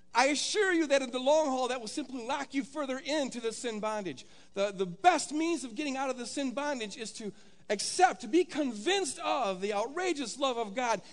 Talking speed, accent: 220 wpm, American